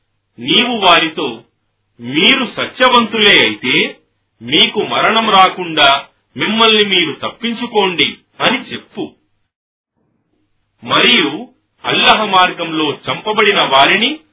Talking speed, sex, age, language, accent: 65 wpm, male, 40-59, Telugu, native